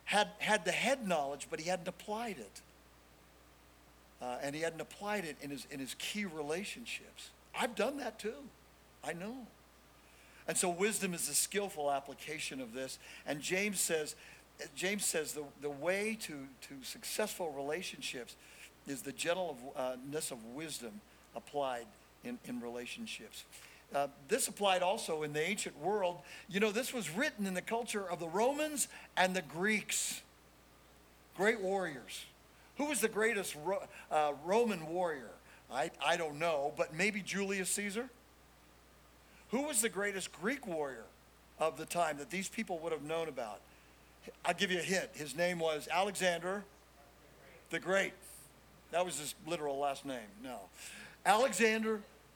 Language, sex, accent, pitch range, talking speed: English, male, American, 140-210 Hz, 150 wpm